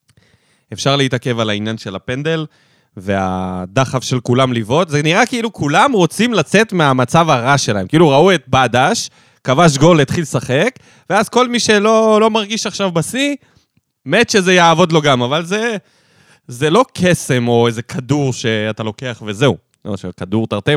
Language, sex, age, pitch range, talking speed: Hebrew, male, 20-39, 125-180 Hz, 160 wpm